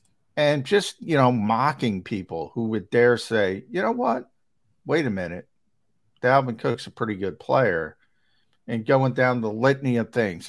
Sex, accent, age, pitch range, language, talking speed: male, American, 50-69, 110-135 Hz, English, 165 wpm